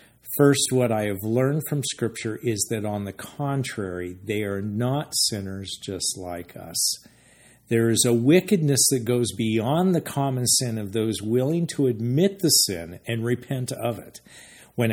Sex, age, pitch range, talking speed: male, 50-69, 100-135 Hz, 165 wpm